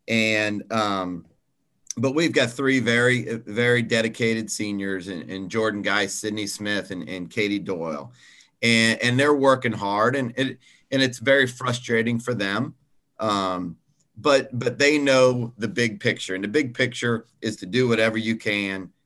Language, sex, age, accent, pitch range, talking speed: English, male, 40-59, American, 105-130 Hz, 155 wpm